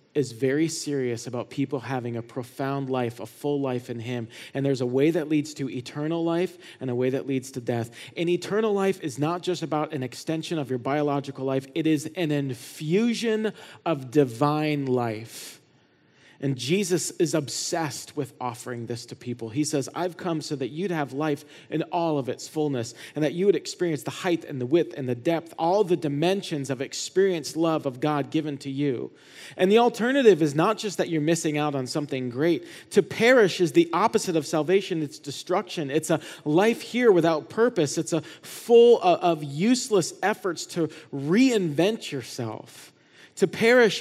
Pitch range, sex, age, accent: 145-185 Hz, male, 40-59, American